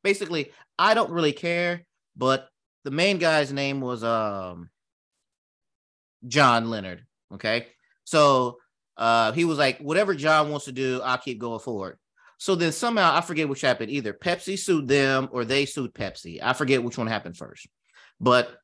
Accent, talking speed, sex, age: American, 165 wpm, male, 30-49